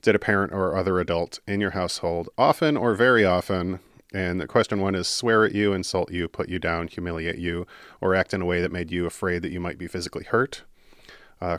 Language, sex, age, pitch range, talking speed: English, male, 40-59, 90-105 Hz, 225 wpm